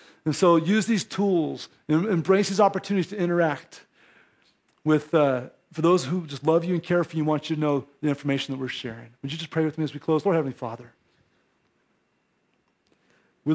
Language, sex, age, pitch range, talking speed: English, male, 40-59, 145-185 Hz, 205 wpm